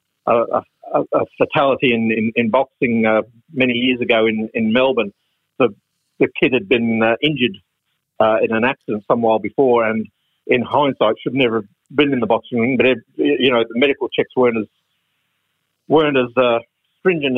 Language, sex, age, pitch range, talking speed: English, male, 50-69, 115-135 Hz, 175 wpm